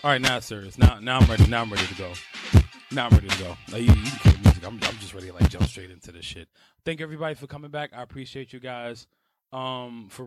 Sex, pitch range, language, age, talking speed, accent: male, 120-155 Hz, English, 20-39, 255 wpm, American